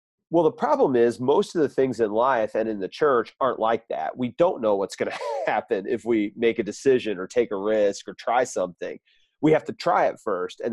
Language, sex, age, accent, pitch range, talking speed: English, male, 30-49, American, 115-170 Hz, 240 wpm